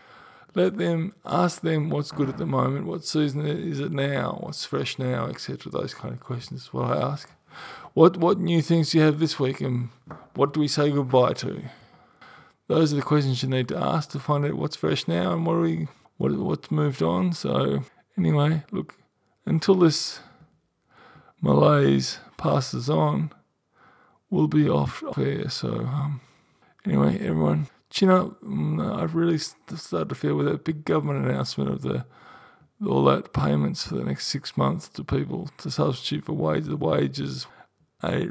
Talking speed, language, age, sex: 175 wpm, English, 20-39, male